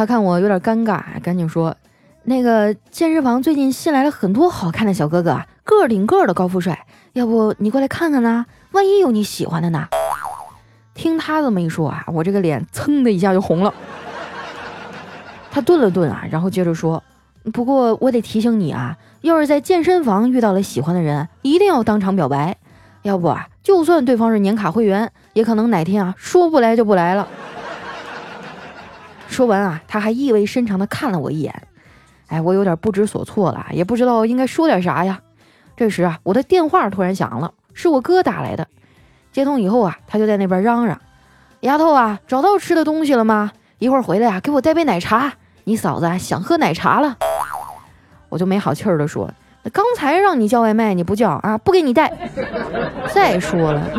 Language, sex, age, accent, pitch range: Chinese, female, 20-39, native, 175-265 Hz